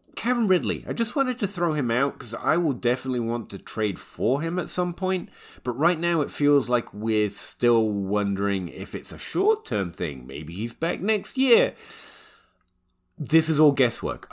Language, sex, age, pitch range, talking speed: English, male, 30-49, 95-135 Hz, 185 wpm